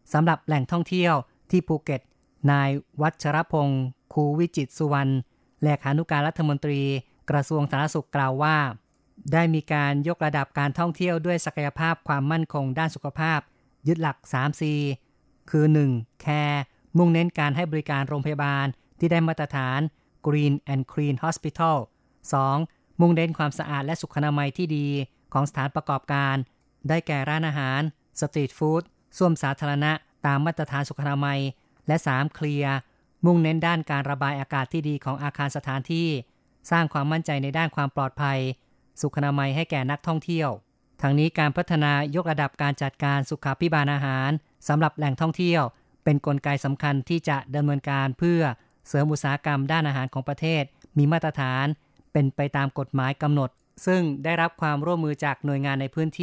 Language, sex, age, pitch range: Thai, female, 20-39, 140-160 Hz